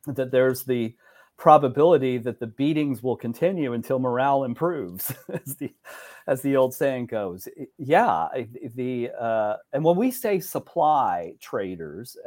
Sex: male